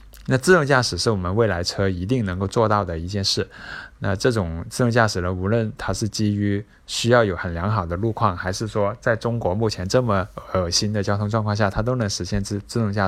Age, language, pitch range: 20-39, Chinese, 95-115 Hz